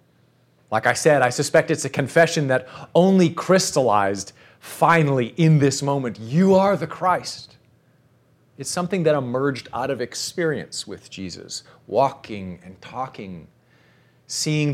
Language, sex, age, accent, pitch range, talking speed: English, male, 30-49, American, 115-150 Hz, 130 wpm